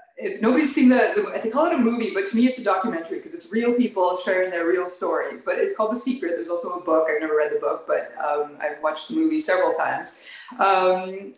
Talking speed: 250 wpm